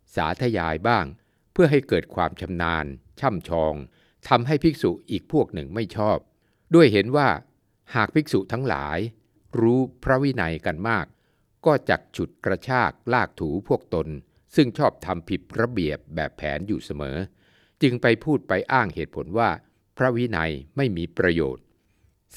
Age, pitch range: 60-79, 85-120 Hz